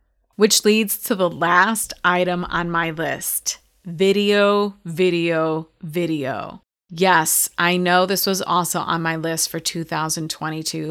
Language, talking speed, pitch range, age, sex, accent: English, 125 wpm, 170-225 Hz, 30-49, female, American